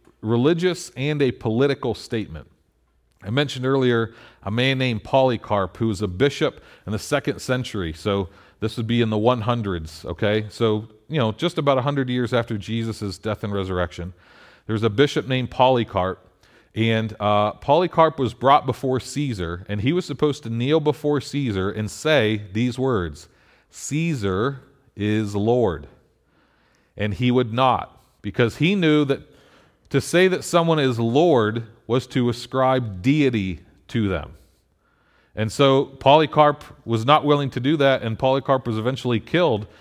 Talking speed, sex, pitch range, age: 150 wpm, male, 105-140 Hz, 40-59